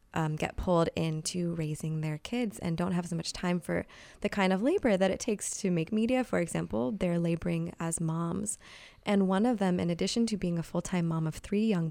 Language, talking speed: English, 220 wpm